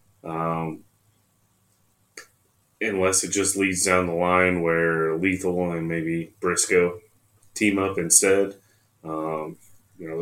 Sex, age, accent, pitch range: male, 20-39, American, 85-105 Hz